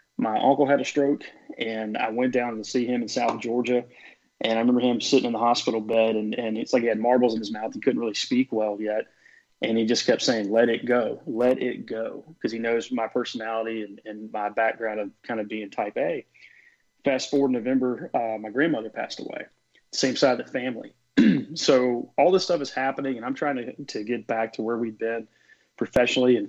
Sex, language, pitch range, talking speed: male, English, 115-135 Hz, 220 wpm